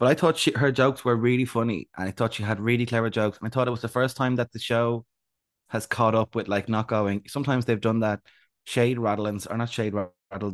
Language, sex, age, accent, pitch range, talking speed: English, male, 20-39, Irish, 100-120 Hz, 255 wpm